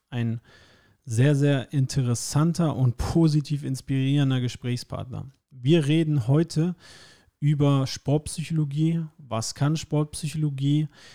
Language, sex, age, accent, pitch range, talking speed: German, male, 40-59, German, 125-150 Hz, 85 wpm